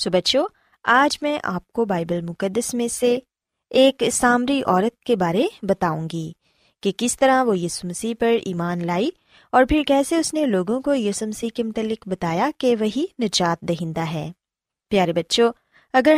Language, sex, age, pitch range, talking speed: Urdu, female, 20-39, 180-270 Hz, 160 wpm